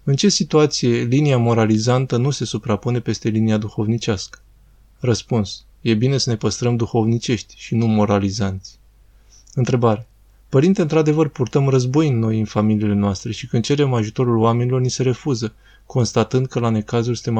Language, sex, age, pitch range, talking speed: Romanian, male, 20-39, 105-130 Hz, 150 wpm